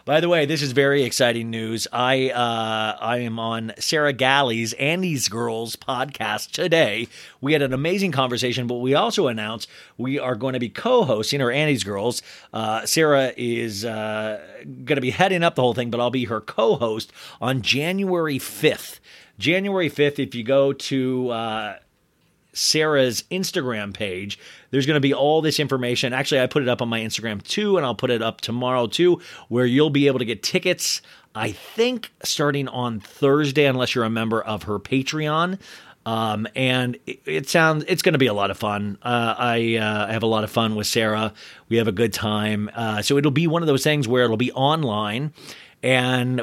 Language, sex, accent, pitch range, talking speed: English, male, American, 115-150 Hz, 195 wpm